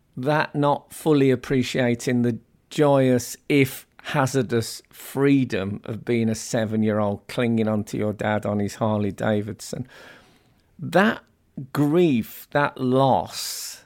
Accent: British